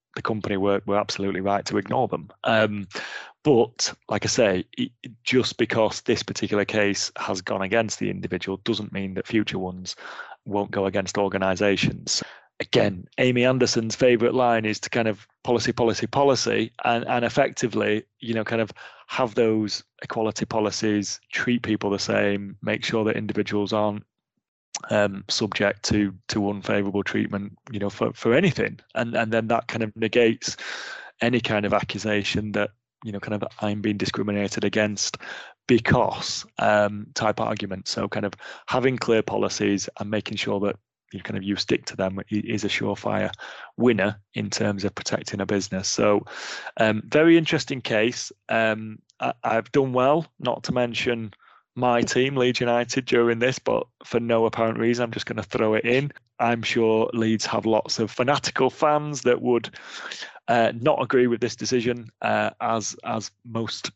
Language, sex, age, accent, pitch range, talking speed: English, male, 30-49, British, 100-120 Hz, 170 wpm